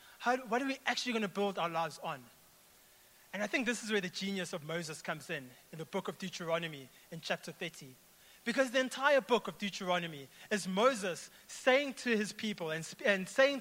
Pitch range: 180-245 Hz